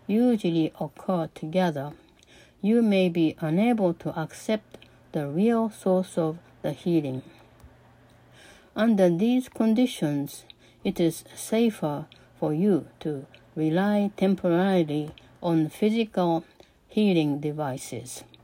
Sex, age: female, 60-79